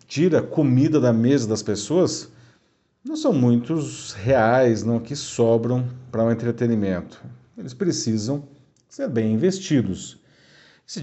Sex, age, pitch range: male, 40-59, 115-175 Hz